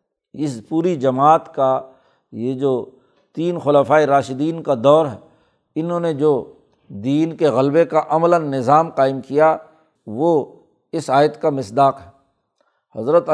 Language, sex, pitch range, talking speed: Urdu, male, 140-170 Hz, 135 wpm